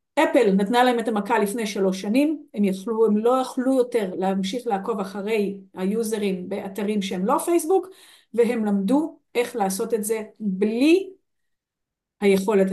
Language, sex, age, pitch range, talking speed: Hebrew, female, 50-69, 200-270 Hz, 140 wpm